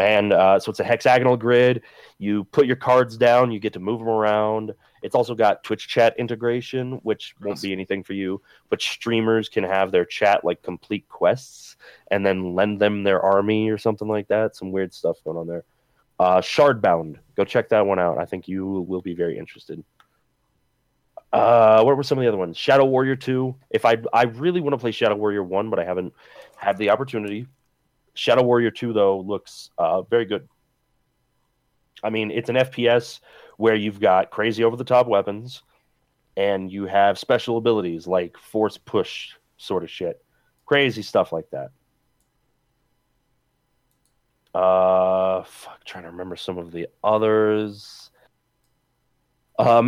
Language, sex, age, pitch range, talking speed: English, male, 30-49, 95-120 Hz, 170 wpm